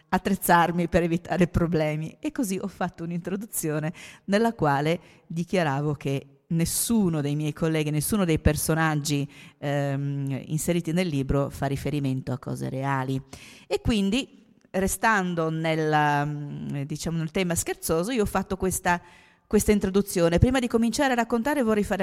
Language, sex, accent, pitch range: Italian, female, native, 150-185 Hz